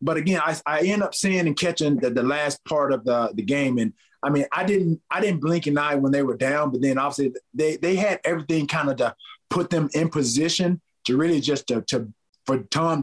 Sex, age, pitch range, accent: male, 30-49, 135-165 Hz, American